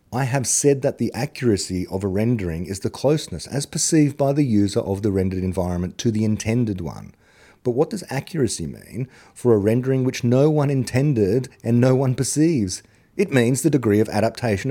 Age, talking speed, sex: 30-49, 190 wpm, male